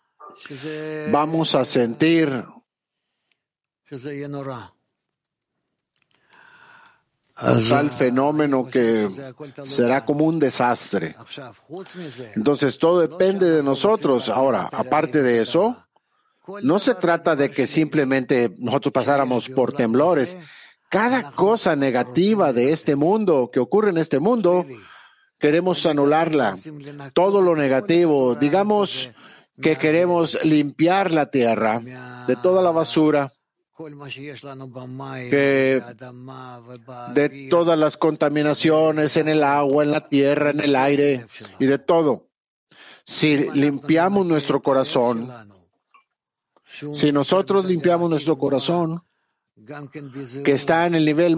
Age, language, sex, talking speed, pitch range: 50-69, Spanish, male, 100 wpm, 130-165 Hz